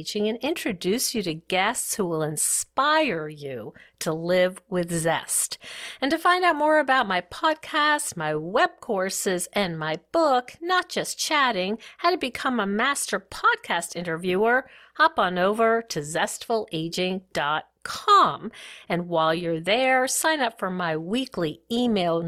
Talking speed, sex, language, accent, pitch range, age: 140 wpm, female, English, American, 175-275 Hz, 50-69